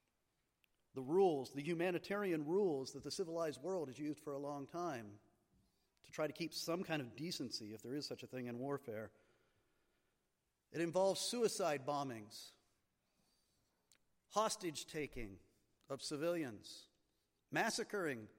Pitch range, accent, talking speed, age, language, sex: 135-200 Hz, American, 125 wpm, 50-69, English, male